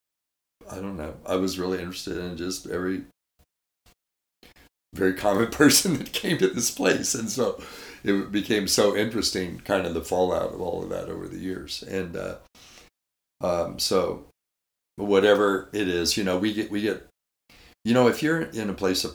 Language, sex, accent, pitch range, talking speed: English, male, American, 75-95 Hz, 175 wpm